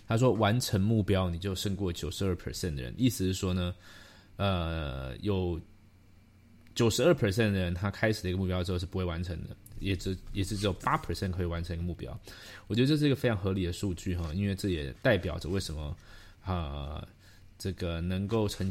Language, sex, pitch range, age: Chinese, male, 90-110 Hz, 20-39